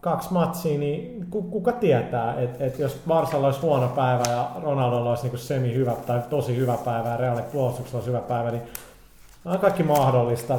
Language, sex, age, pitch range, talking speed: Finnish, male, 30-49, 120-140 Hz, 175 wpm